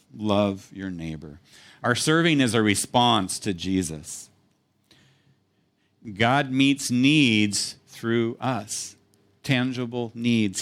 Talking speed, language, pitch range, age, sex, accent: 95 wpm, English, 110-140 Hz, 50-69, male, American